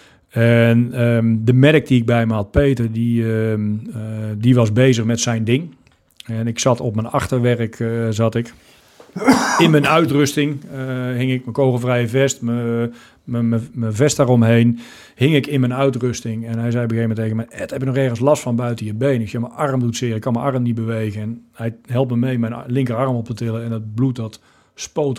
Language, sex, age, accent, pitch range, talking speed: Dutch, male, 40-59, Dutch, 115-130 Hz, 225 wpm